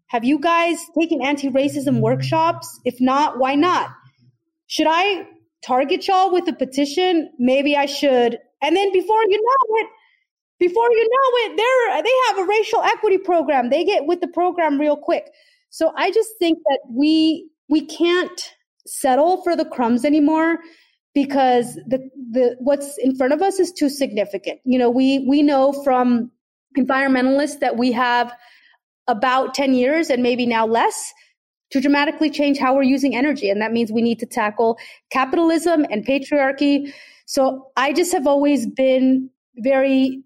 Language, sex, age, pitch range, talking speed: English, female, 30-49, 255-330 Hz, 160 wpm